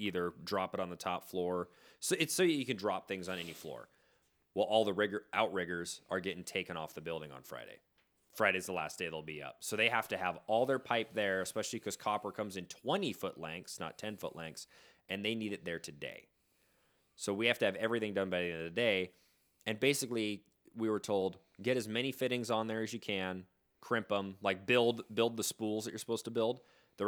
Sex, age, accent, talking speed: male, 30-49, American, 225 wpm